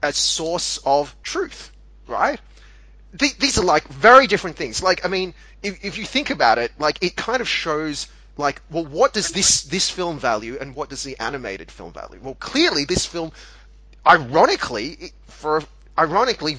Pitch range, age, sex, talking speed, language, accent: 130-180 Hz, 30-49, male, 175 wpm, English, Australian